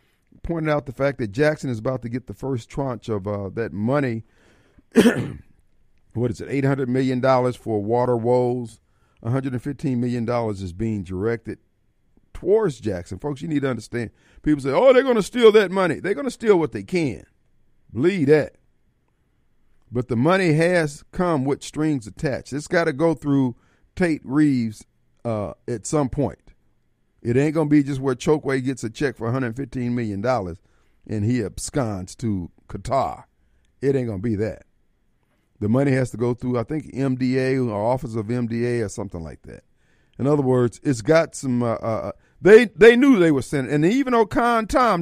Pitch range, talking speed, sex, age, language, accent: 115-150 Hz, 180 wpm, male, 50-69, English, American